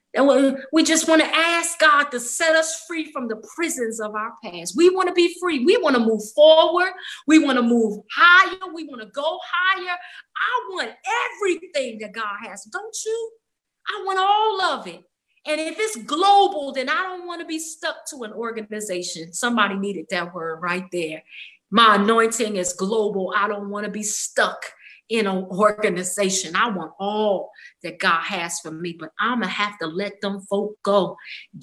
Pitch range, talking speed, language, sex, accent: 200-300 Hz, 195 wpm, English, female, American